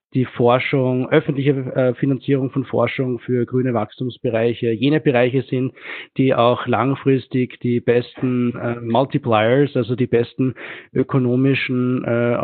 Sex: male